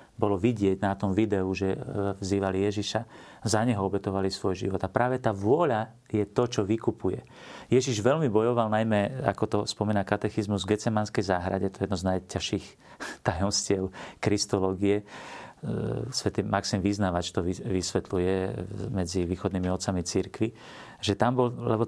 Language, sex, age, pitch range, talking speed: Slovak, male, 40-59, 100-120 Hz, 130 wpm